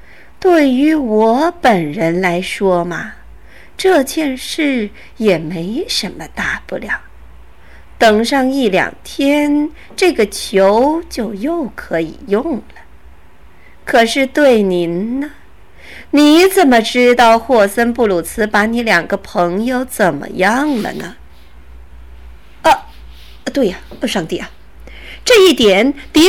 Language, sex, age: Chinese, female, 50-69